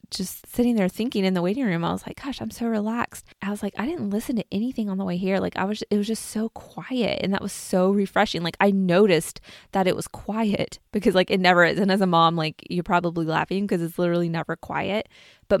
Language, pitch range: English, 175-210 Hz